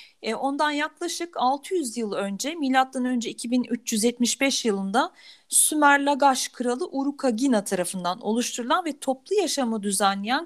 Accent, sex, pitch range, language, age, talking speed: native, female, 215-295 Hz, Turkish, 40-59, 105 wpm